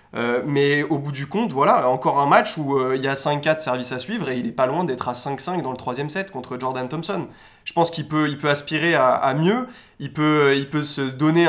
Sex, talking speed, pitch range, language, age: male, 260 wpm, 130-155 Hz, French, 20-39